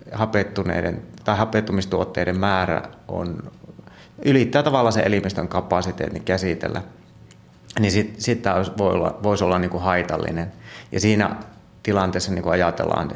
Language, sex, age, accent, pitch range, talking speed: Finnish, male, 30-49, native, 85-105 Hz, 115 wpm